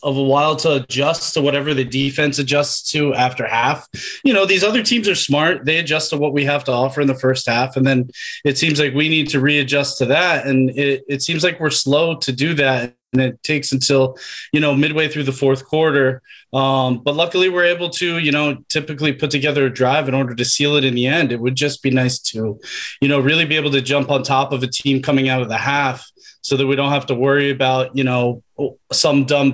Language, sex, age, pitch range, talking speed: English, male, 20-39, 130-150 Hz, 245 wpm